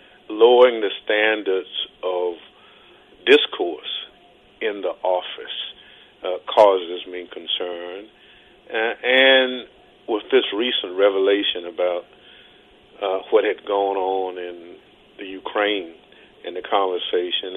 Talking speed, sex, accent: 100 wpm, male, American